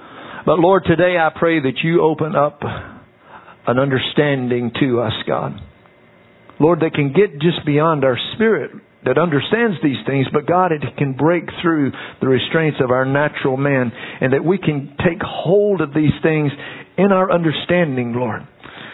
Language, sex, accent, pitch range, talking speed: English, male, American, 130-170 Hz, 160 wpm